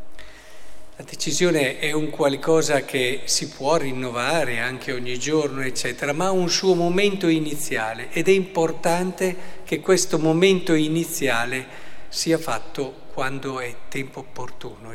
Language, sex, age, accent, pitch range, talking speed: Italian, male, 50-69, native, 140-180 Hz, 130 wpm